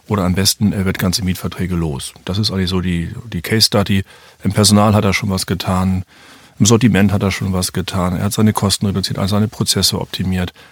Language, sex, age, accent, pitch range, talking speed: German, male, 40-59, German, 95-110 Hz, 220 wpm